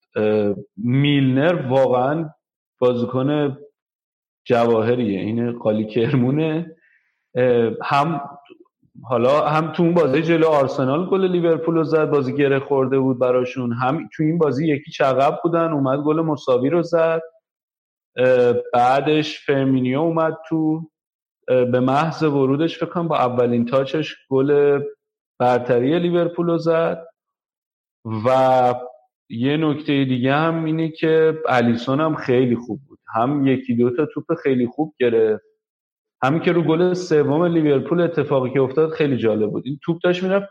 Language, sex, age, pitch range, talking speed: Persian, male, 40-59, 130-165 Hz, 130 wpm